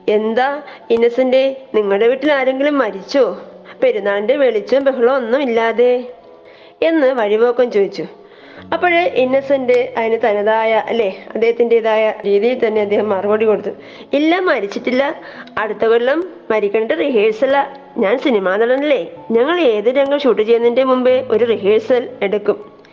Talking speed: 115 wpm